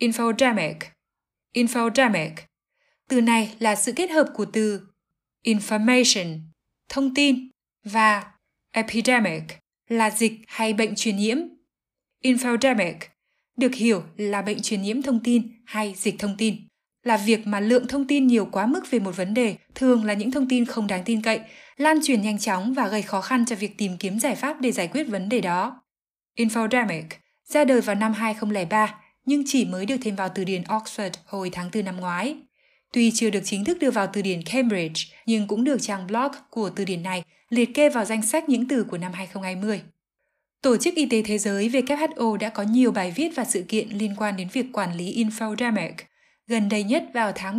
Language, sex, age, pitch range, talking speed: Vietnamese, female, 10-29, 200-245 Hz, 190 wpm